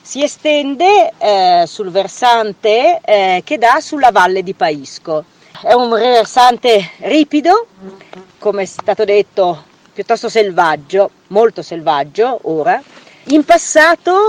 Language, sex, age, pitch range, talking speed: Italian, female, 40-59, 180-240 Hz, 115 wpm